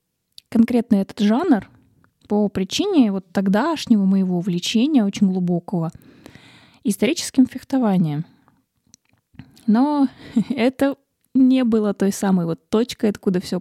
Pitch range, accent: 195-245 Hz, native